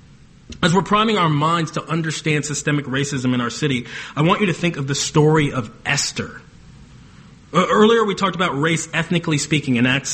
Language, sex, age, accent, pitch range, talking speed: English, male, 30-49, American, 125-175 Hz, 185 wpm